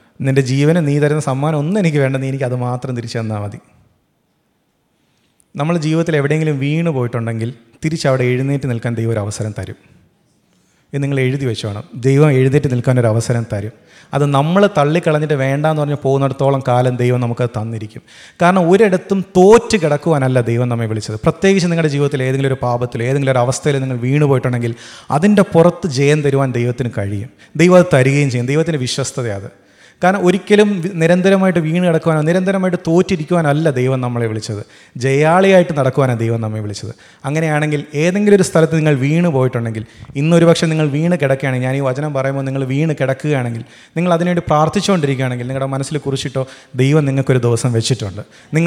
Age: 30-49